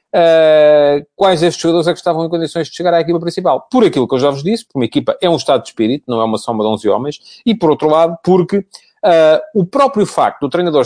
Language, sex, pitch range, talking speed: English, male, 120-185 Hz, 260 wpm